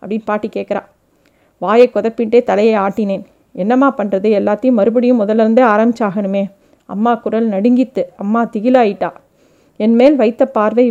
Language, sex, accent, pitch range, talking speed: Tamil, female, native, 210-250 Hz, 120 wpm